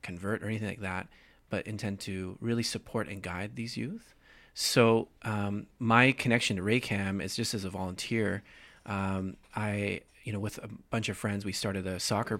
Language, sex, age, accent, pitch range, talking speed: English, male, 30-49, American, 95-110 Hz, 185 wpm